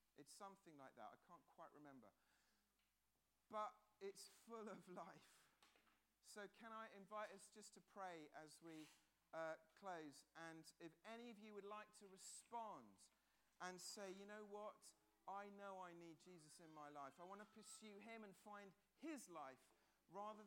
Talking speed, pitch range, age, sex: 165 wpm, 160-210 Hz, 40-59, male